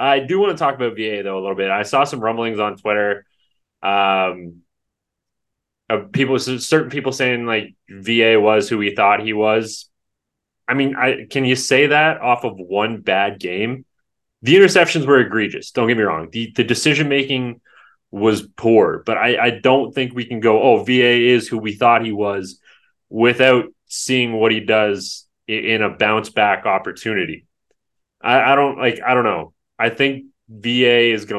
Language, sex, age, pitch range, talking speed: English, male, 20-39, 100-125 Hz, 175 wpm